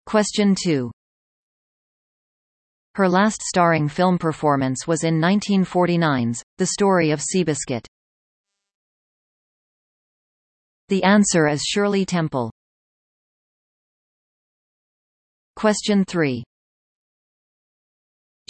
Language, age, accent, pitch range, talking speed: English, 40-59, American, 145-200 Hz, 70 wpm